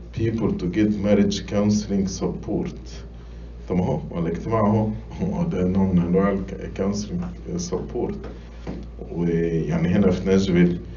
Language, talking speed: English, 100 wpm